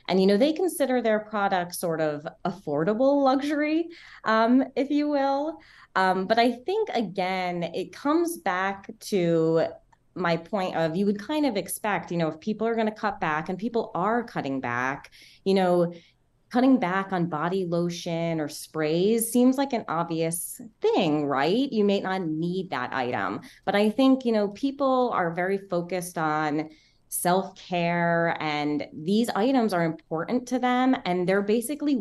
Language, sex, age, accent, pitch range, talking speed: English, female, 20-39, American, 165-225 Hz, 165 wpm